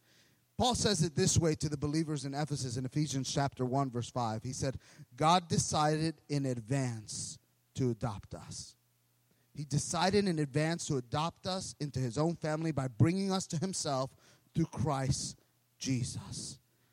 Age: 30-49